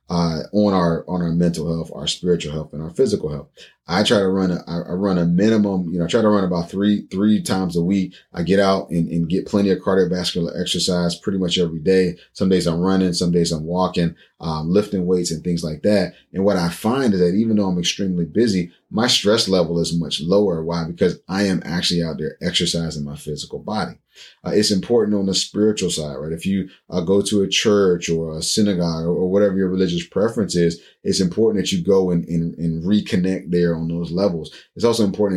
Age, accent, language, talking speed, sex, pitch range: 30-49, American, English, 225 wpm, male, 85-100 Hz